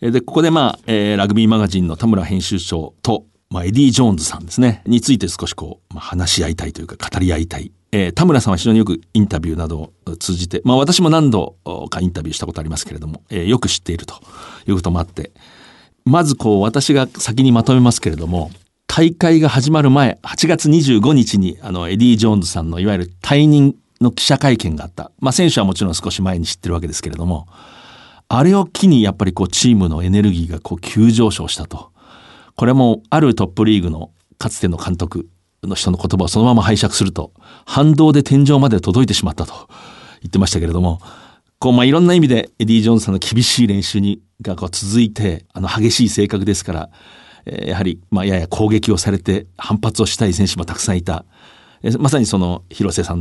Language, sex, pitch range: Japanese, male, 85-115 Hz